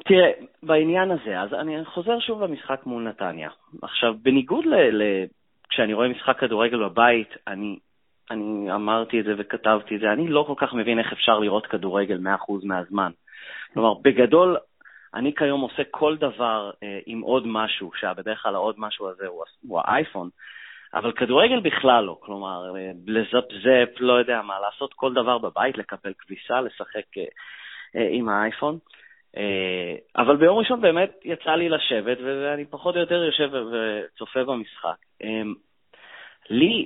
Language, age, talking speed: Hebrew, 30-49, 150 wpm